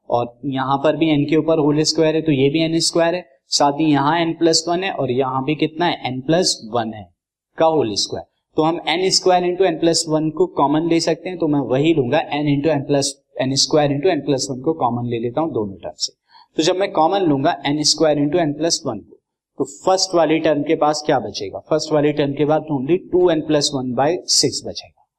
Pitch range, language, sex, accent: 140-165 Hz, Hindi, male, native